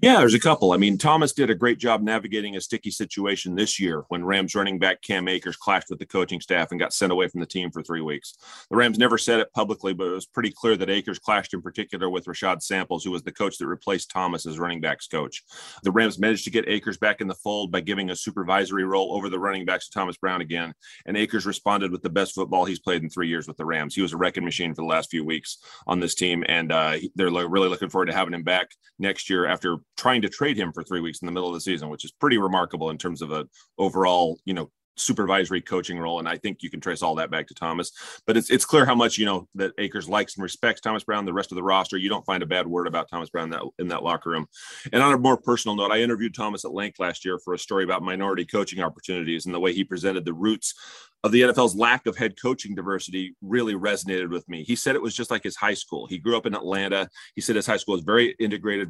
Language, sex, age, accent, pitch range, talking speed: English, male, 30-49, American, 90-105 Hz, 270 wpm